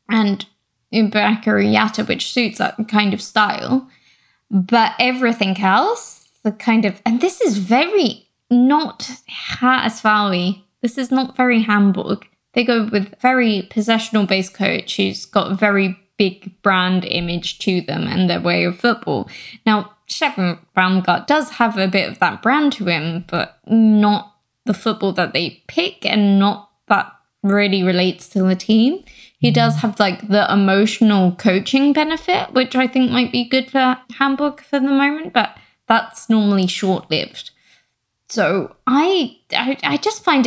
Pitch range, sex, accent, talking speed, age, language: 190-250 Hz, female, British, 150 wpm, 10-29, English